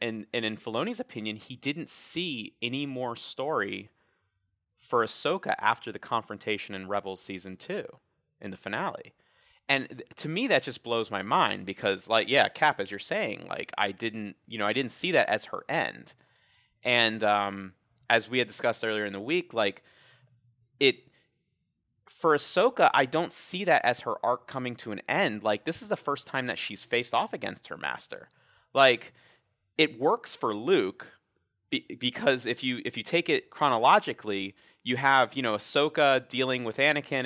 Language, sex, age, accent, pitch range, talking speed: English, male, 30-49, American, 105-135 Hz, 175 wpm